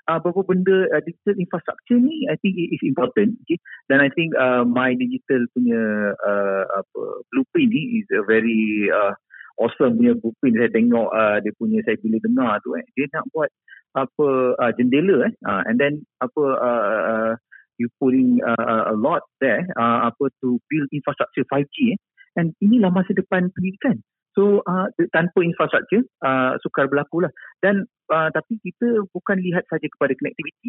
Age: 50-69